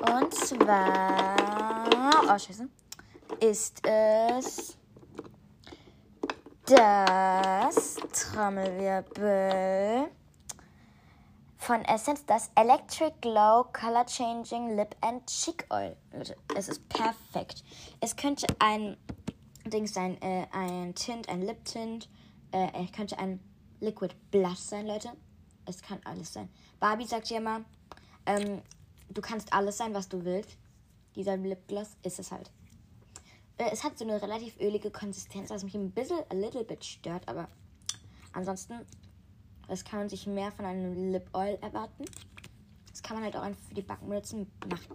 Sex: female